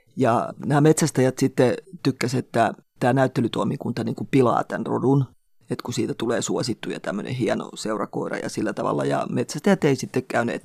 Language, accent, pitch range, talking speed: Finnish, native, 120-145 Hz, 160 wpm